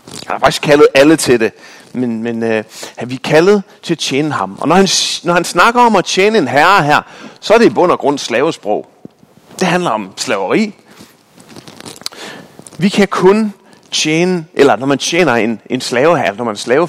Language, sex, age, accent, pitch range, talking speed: Danish, male, 30-49, native, 145-200 Hz, 205 wpm